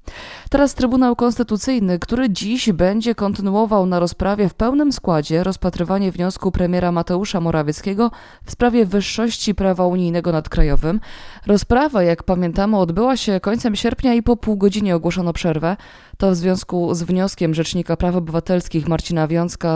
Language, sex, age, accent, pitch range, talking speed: Polish, female, 20-39, native, 165-205 Hz, 145 wpm